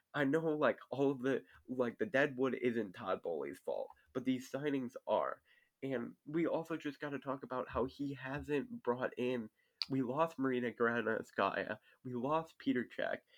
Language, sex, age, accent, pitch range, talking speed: English, male, 20-39, American, 115-150 Hz, 170 wpm